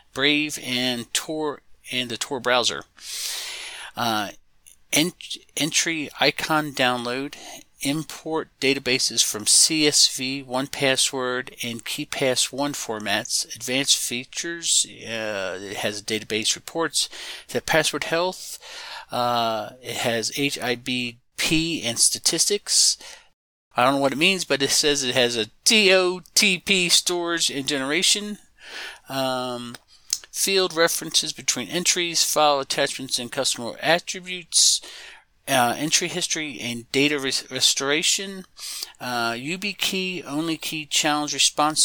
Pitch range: 130-170 Hz